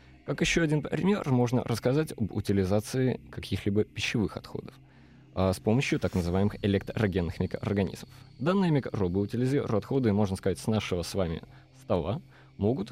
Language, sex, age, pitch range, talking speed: Russian, male, 20-39, 95-130 Hz, 135 wpm